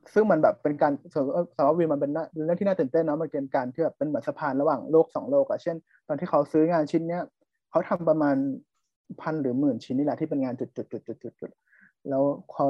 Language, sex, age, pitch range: Thai, male, 20-39, 140-170 Hz